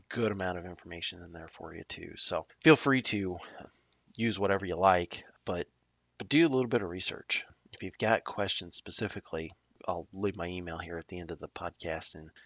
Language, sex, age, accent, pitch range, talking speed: English, male, 20-39, American, 85-105 Hz, 200 wpm